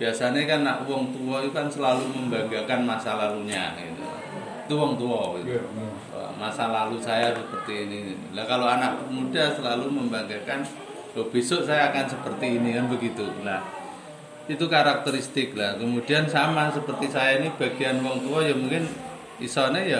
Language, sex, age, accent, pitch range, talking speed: Indonesian, male, 30-49, native, 105-135 Hz, 150 wpm